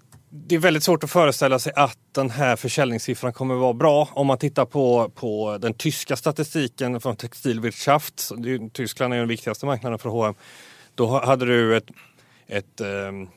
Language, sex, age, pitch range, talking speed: Swedish, male, 30-49, 110-135 Hz, 170 wpm